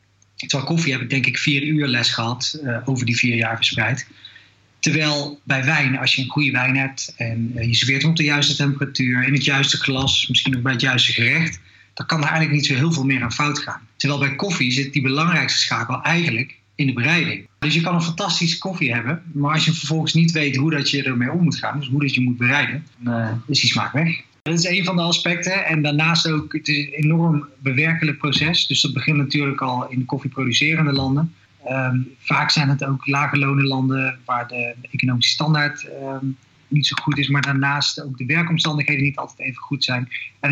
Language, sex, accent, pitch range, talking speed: Dutch, male, Dutch, 130-155 Hz, 220 wpm